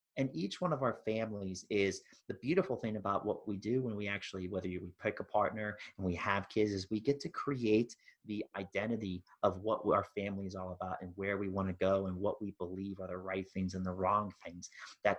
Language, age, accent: English, 30-49, American